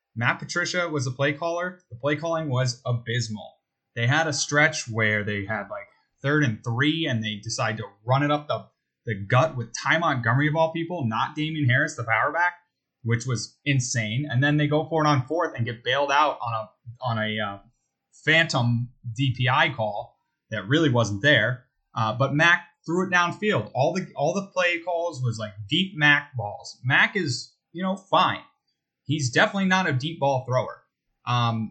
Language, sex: English, male